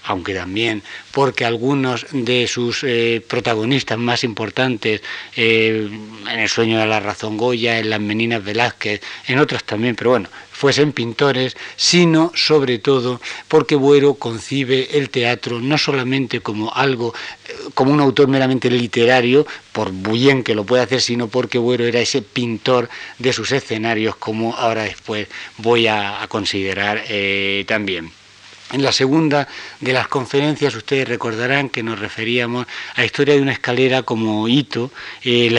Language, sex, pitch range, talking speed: Spanish, male, 110-135 Hz, 155 wpm